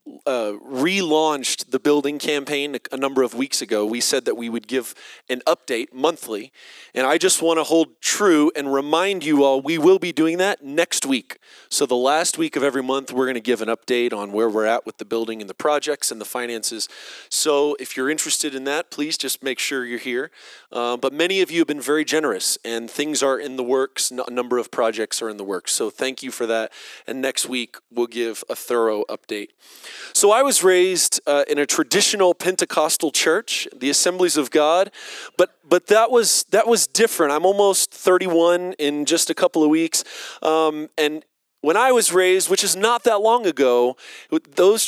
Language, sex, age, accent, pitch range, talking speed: English, male, 30-49, American, 130-185 Hz, 205 wpm